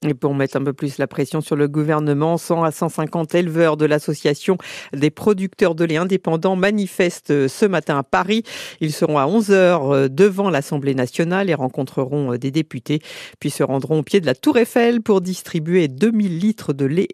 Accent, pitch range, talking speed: French, 150-195 Hz, 185 wpm